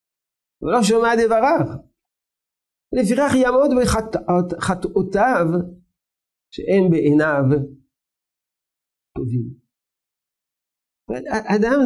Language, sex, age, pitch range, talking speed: Hebrew, male, 50-69, 130-190 Hz, 55 wpm